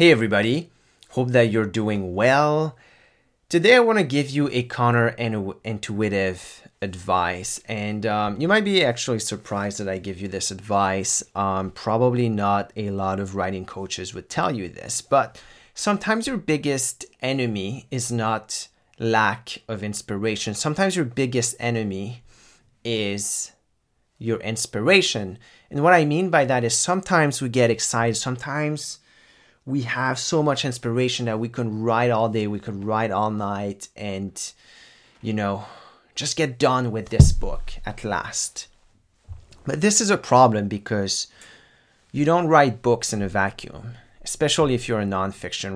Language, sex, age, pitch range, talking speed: English, male, 30-49, 100-130 Hz, 150 wpm